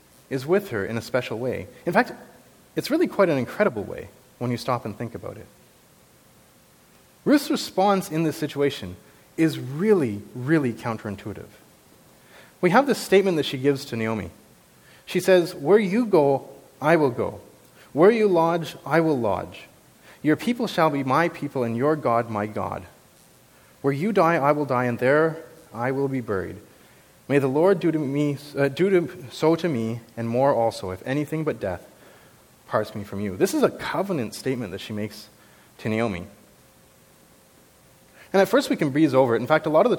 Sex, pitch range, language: male, 110-155 Hz, English